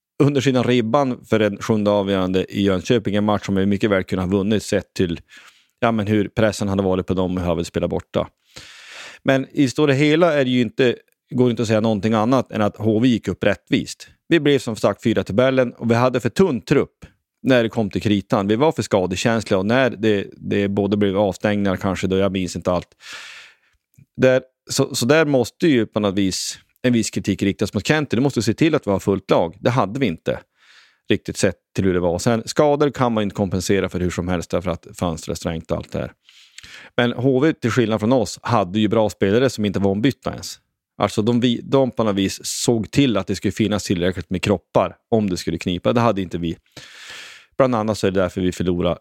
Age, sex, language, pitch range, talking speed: 30-49, male, Swedish, 95-125 Hz, 230 wpm